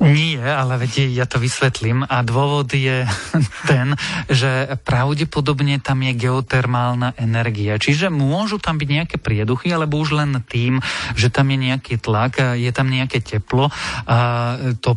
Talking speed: 150 wpm